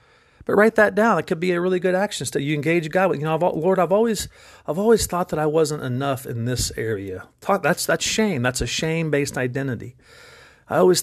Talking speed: 225 wpm